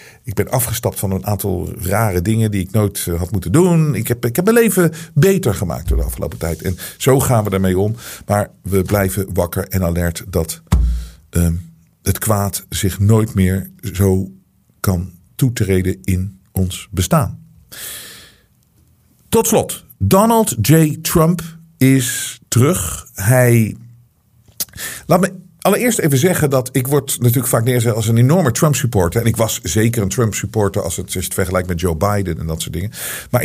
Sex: male